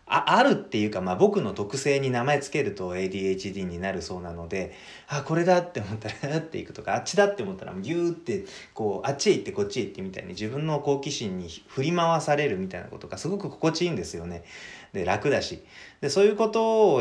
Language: Japanese